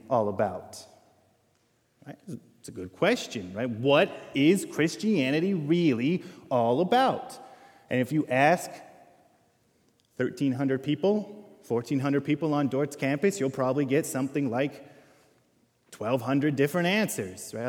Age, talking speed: 20-39, 125 wpm